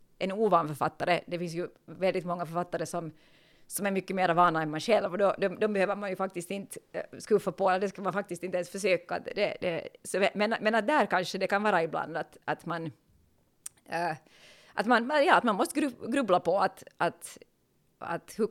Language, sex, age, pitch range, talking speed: Swedish, female, 30-49, 175-210 Hz, 205 wpm